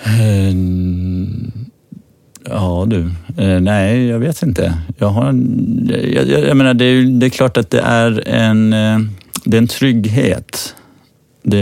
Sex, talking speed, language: male, 140 wpm, English